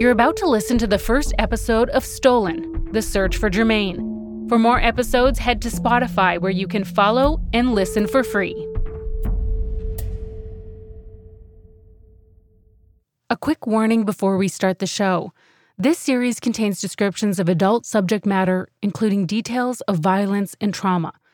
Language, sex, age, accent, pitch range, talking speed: English, female, 30-49, American, 185-245 Hz, 140 wpm